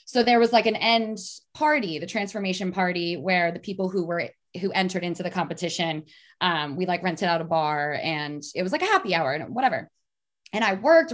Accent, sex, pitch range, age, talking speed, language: American, female, 185-255 Hz, 20-39, 210 wpm, English